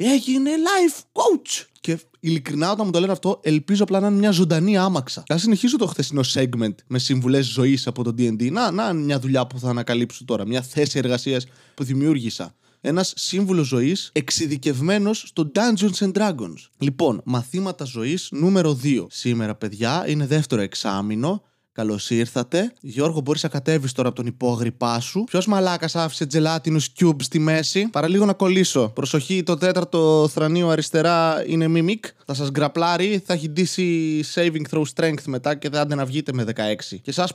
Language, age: Greek, 20-39